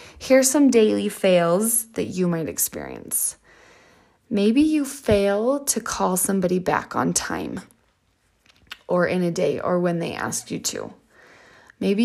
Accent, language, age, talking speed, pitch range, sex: American, English, 20-39, 140 wpm, 180-235 Hz, female